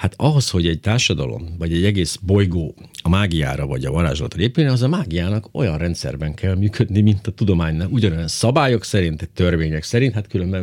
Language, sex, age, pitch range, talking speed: Hungarian, male, 50-69, 85-115 Hz, 180 wpm